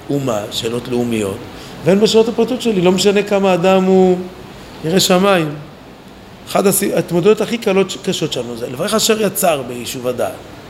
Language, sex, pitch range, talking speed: Hebrew, male, 145-215 Hz, 155 wpm